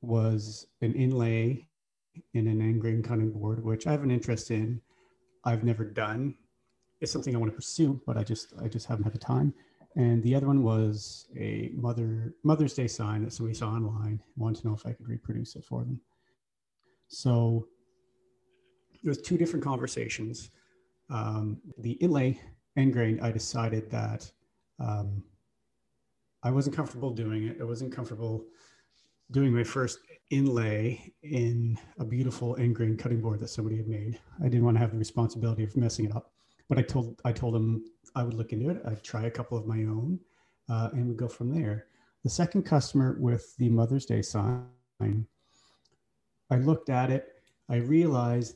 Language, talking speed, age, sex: English, 175 wpm, 40-59, male